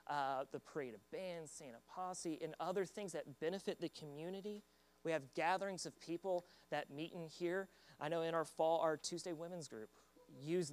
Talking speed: 185 wpm